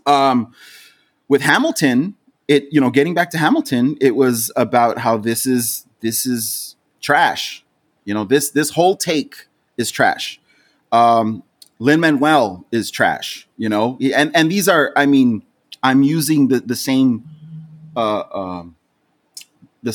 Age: 30-49